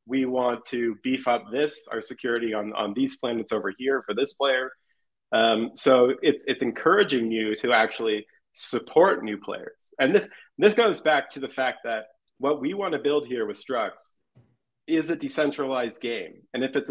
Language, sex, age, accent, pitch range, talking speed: English, male, 30-49, American, 115-150 Hz, 185 wpm